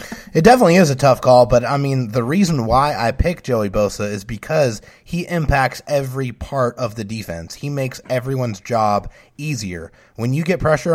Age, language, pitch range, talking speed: 30-49, English, 115-145 Hz, 185 wpm